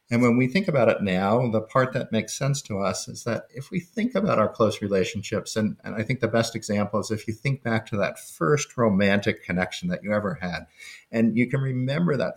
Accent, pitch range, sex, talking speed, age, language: American, 95-120 Hz, male, 240 wpm, 50-69, English